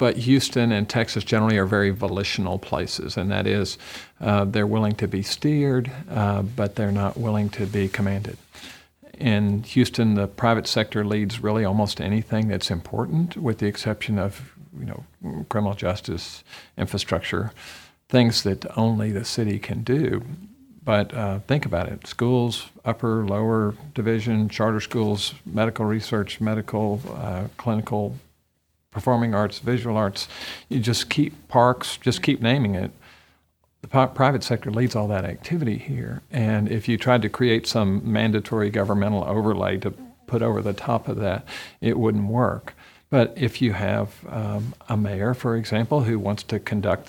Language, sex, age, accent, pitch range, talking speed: English, male, 50-69, American, 105-120 Hz, 155 wpm